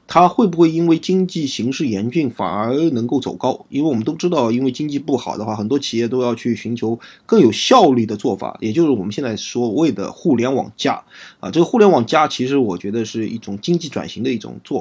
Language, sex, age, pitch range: Chinese, male, 20-39, 120-180 Hz